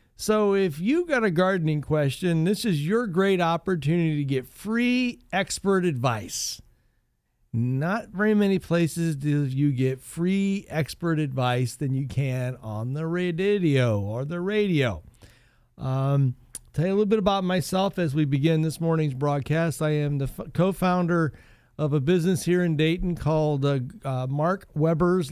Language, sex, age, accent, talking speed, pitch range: English, male, 50-69, American, 155 wpm, 140-175 Hz